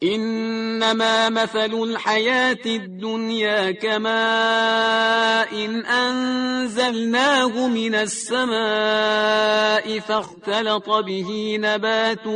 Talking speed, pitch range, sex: 60 wpm, 175-220 Hz, male